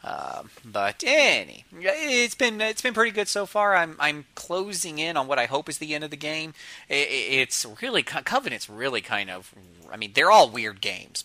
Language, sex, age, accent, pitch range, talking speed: English, male, 30-49, American, 110-150 Hz, 200 wpm